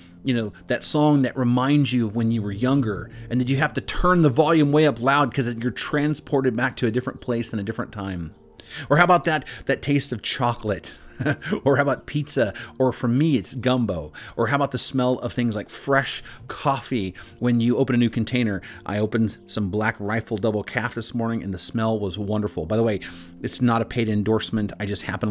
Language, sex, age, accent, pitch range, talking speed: English, male, 30-49, American, 105-135 Hz, 220 wpm